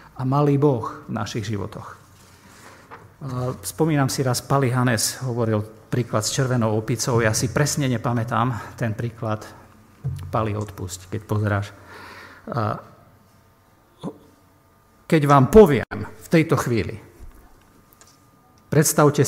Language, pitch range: Slovak, 100-135 Hz